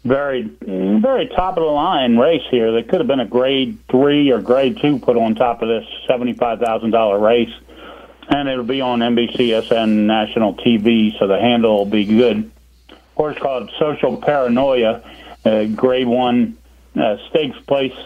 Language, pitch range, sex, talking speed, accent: English, 105-130 Hz, male, 165 wpm, American